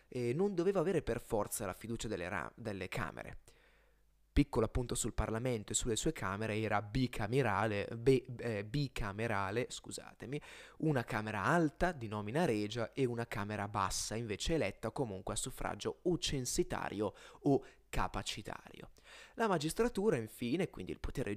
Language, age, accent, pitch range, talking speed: Italian, 20-39, native, 110-150 Hz, 140 wpm